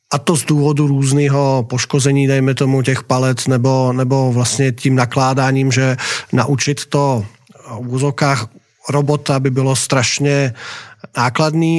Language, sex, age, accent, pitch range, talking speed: English, male, 40-59, Czech, 125-140 Hz, 125 wpm